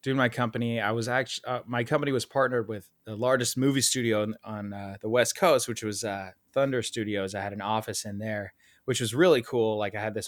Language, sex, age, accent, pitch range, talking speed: English, male, 20-39, American, 100-125 Hz, 240 wpm